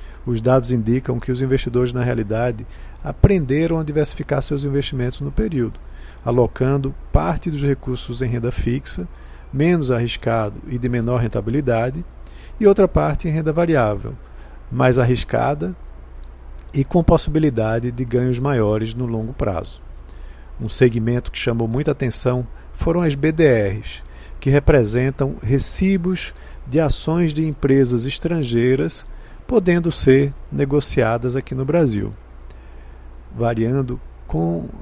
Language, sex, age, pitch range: Portuguese, male, 50-69, 105-145 Hz